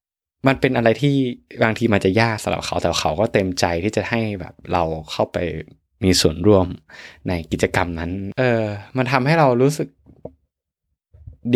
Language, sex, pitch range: Thai, male, 85-115 Hz